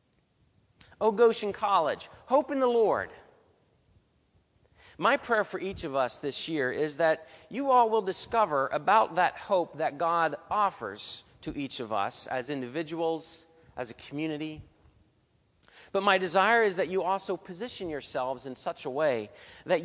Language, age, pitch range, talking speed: English, 40-59, 130-200 Hz, 150 wpm